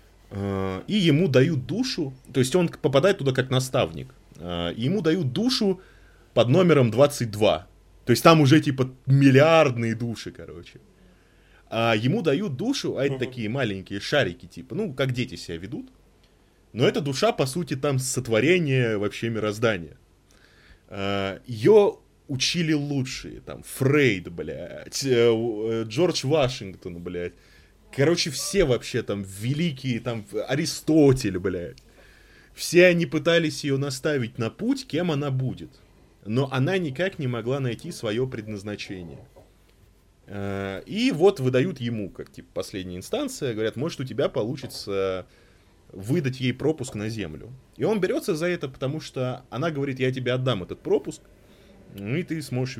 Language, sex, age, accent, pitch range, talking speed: Russian, male, 20-39, native, 105-150 Hz, 135 wpm